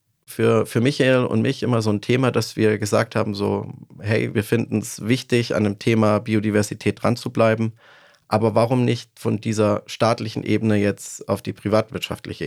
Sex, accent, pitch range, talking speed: male, German, 105-120 Hz, 180 wpm